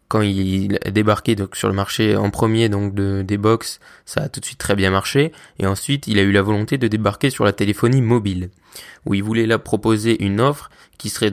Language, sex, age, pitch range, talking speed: French, male, 20-39, 100-120 Hz, 220 wpm